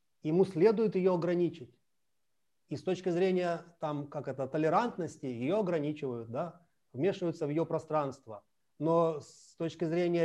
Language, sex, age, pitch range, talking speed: Russian, male, 30-49, 155-190 Hz, 135 wpm